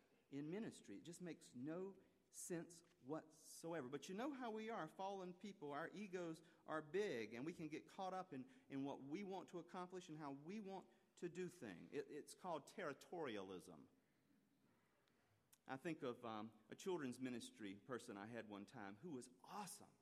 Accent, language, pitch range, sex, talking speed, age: American, English, 125-185 Hz, male, 175 wpm, 40-59